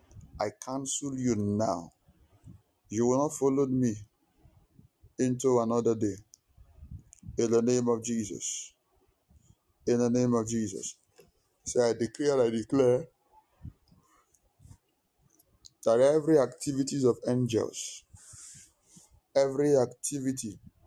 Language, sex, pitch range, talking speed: English, male, 110-130 Hz, 100 wpm